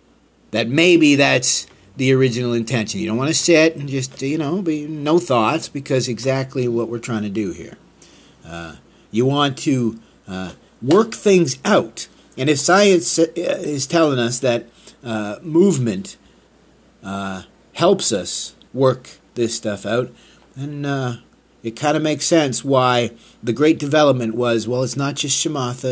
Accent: American